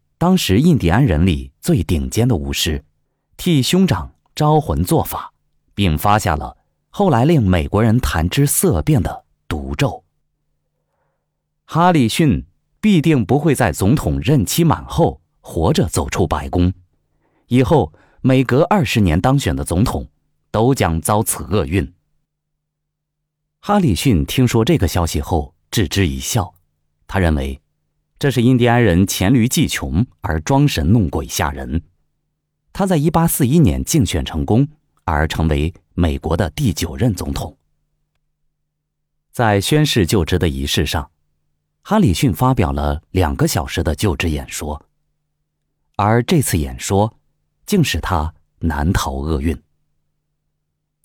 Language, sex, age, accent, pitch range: Chinese, male, 30-49, native, 75-125 Hz